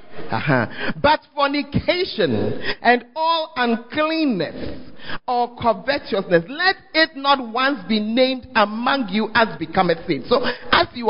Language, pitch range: English, 175-280 Hz